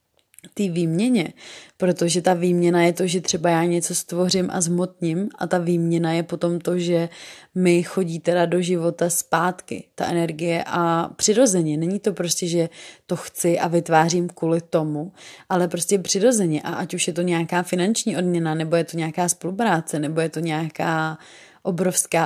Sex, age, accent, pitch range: female, 20-39, native, 170-185 Hz